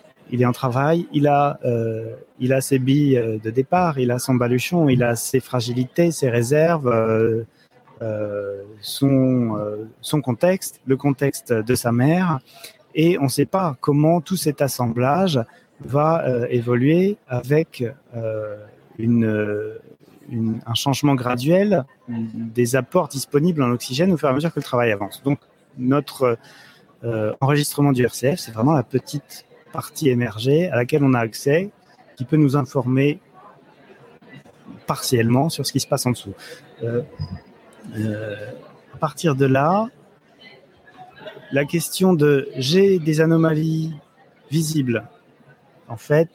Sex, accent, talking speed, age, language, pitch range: male, French, 145 wpm, 30-49, French, 120-155 Hz